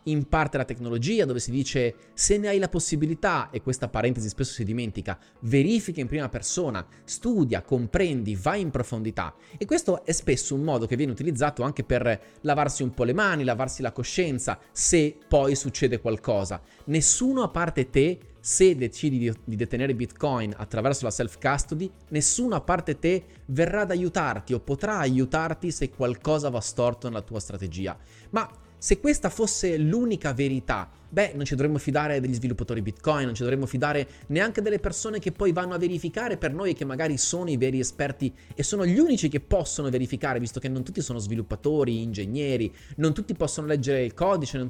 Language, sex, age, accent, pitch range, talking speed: Italian, male, 30-49, native, 120-160 Hz, 185 wpm